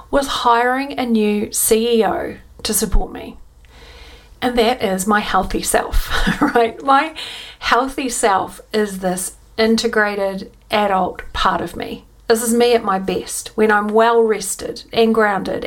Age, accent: 40-59, Australian